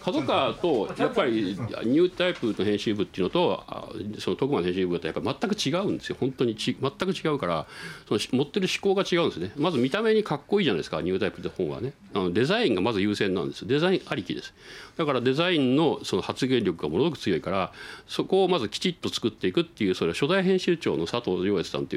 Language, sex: Japanese, male